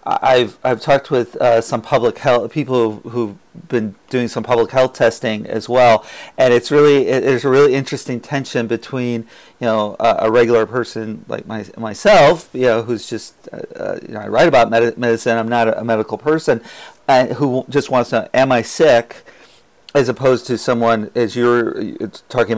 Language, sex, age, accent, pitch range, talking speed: English, male, 40-59, American, 110-125 Hz, 195 wpm